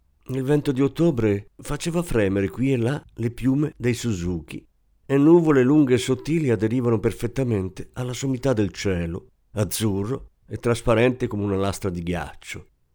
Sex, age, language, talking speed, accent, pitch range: male, 50-69, Italian, 150 wpm, native, 95-130 Hz